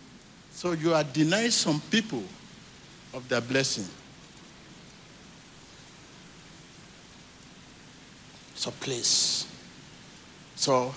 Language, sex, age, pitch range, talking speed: English, male, 60-79, 130-190 Hz, 70 wpm